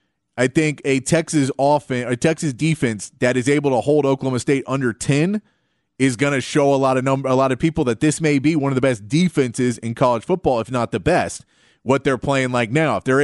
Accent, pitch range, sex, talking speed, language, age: American, 125-150 Hz, male, 235 wpm, English, 30-49